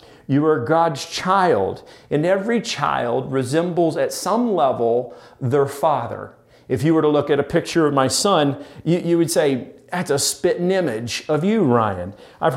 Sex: male